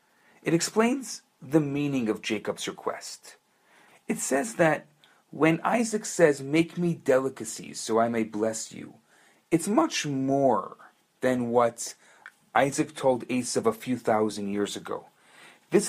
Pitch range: 130-170 Hz